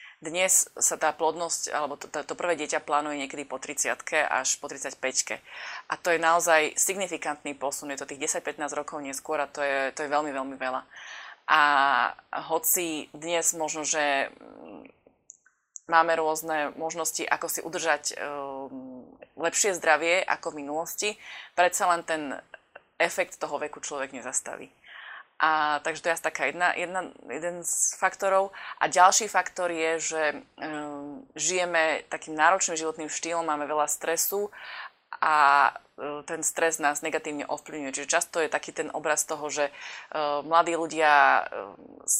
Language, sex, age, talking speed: Slovak, female, 20-39, 150 wpm